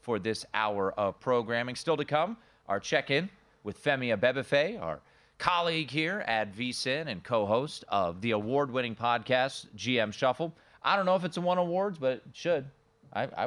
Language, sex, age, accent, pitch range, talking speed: English, male, 30-49, American, 115-155 Hz, 175 wpm